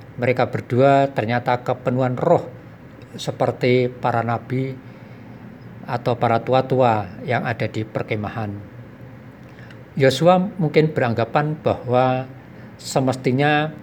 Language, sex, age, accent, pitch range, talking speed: Indonesian, male, 50-69, native, 115-135 Hz, 85 wpm